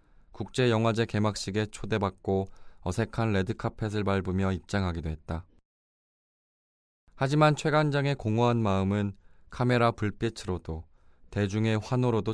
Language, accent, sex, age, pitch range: Korean, native, male, 20-39, 90-115 Hz